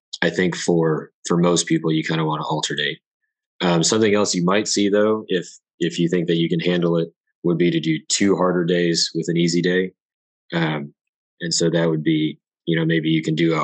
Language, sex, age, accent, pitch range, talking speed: English, male, 20-39, American, 80-90 Hz, 235 wpm